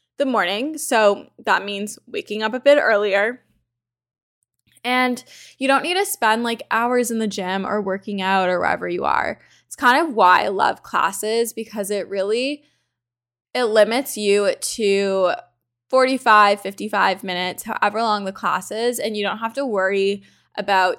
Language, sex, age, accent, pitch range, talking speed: English, female, 10-29, American, 190-235 Hz, 165 wpm